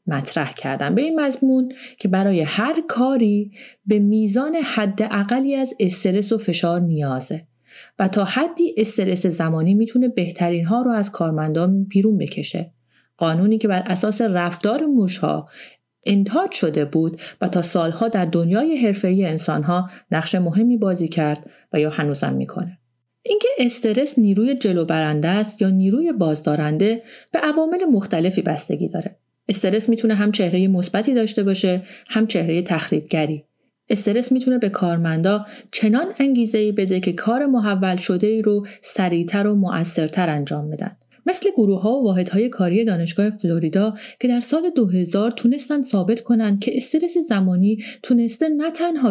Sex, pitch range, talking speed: female, 170-230 Hz, 145 wpm